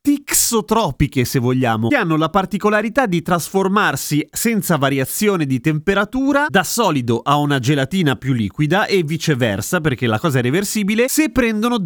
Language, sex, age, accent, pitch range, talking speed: Italian, male, 30-49, native, 135-205 Hz, 145 wpm